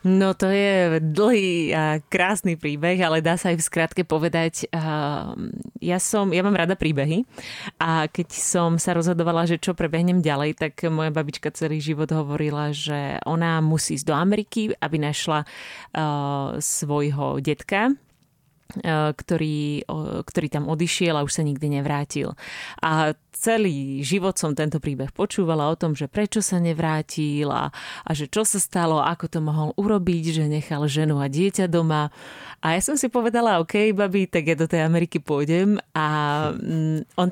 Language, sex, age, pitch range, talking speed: Czech, female, 30-49, 150-175 Hz, 160 wpm